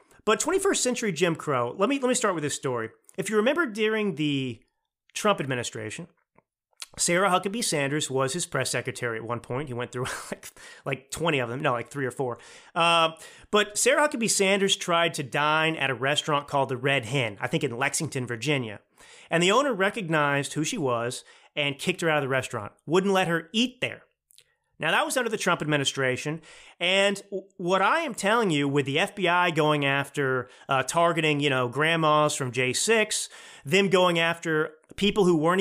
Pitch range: 140-190 Hz